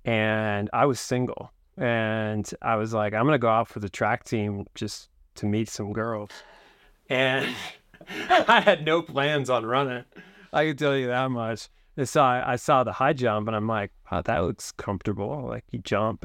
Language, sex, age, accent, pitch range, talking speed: English, male, 30-49, American, 105-130 Hz, 190 wpm